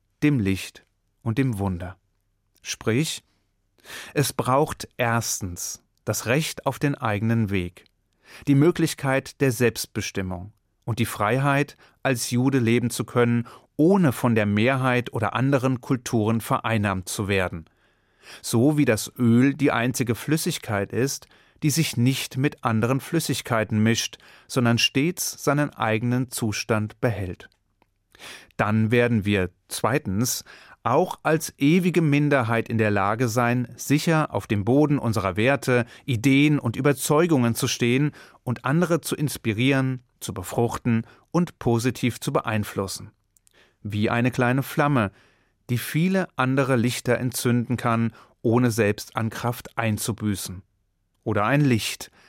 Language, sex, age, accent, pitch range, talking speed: German, male, 30-49, German, 105-135 Hz, 125 wpm